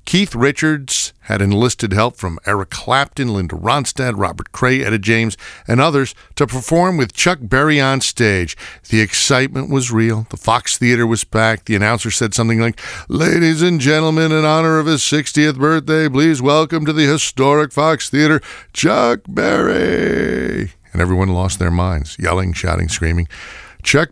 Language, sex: English, male